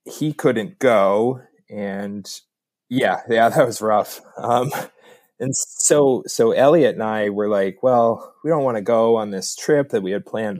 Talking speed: 175 wpm